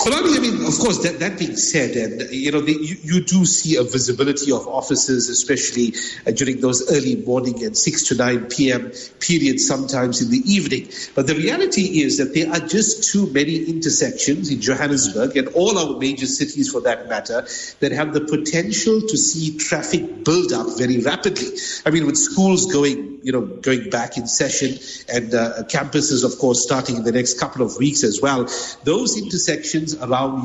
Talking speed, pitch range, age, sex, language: 190 wpm, 130-175 Hz, 50-69, male, English